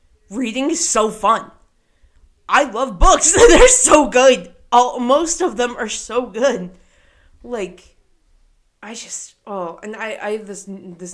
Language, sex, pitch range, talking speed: English, female, 210-300 Hz, 145 wpm